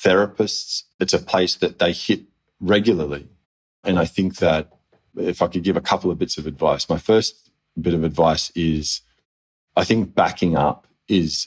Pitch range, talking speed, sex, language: 80-90 Hz, 175 wpm, male, English